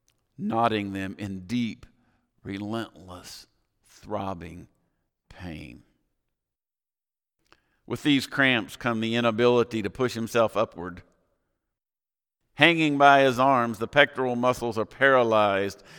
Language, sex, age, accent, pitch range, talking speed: English, male, 50-69, American, 100-125 Hz, 100 wpm